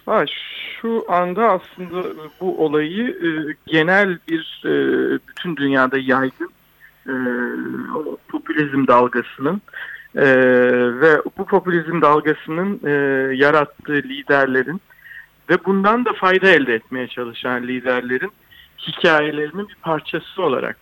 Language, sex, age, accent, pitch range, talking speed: Turkish, male, 50-69, native, 135-175 Hz, 85 wpm